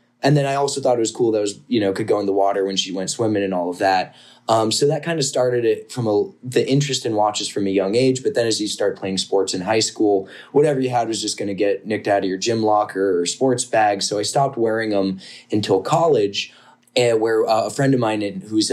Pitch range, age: 100-125 Hz, 20-39